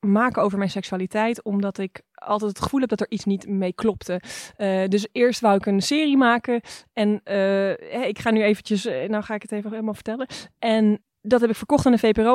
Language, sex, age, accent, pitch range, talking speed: Dutch, female, 20-39, Dutch, 195-225 Hz, 225 wpm